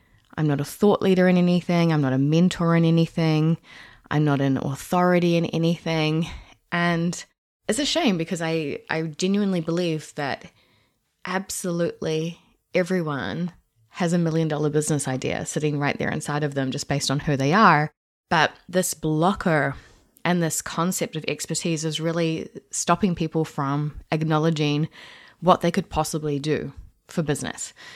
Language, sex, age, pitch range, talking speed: English, female, 20-39, 150-185 Hz, 150 wpm